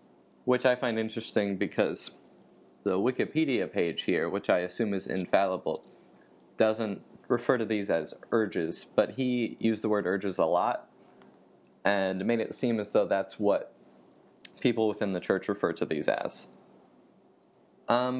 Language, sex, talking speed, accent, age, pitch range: English, male, 150 wpm, American, 20-39, 105-130 Hz